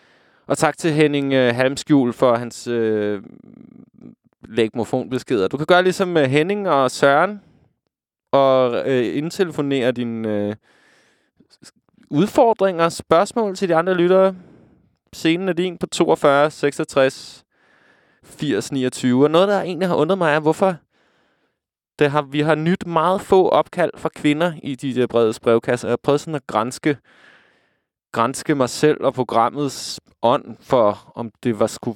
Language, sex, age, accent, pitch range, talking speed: Danish, male, 20-39, native, 125-165 Hz, 145 wpm